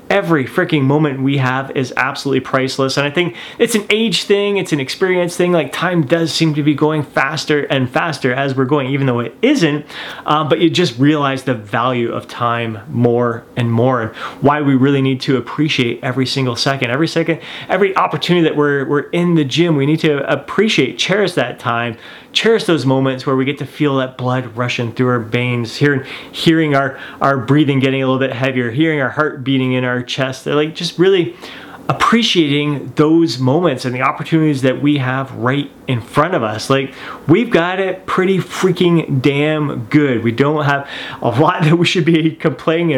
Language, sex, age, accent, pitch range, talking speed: English, male, 30-49, American, 130-160 Hz, 200 wpm